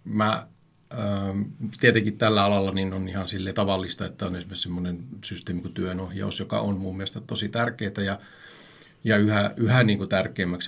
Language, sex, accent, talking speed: Finnish, male, native, 155 wpm